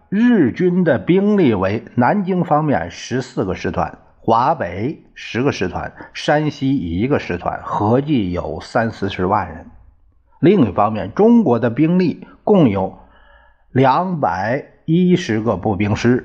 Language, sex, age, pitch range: Chinese, male, 50-69, 105-170 Hz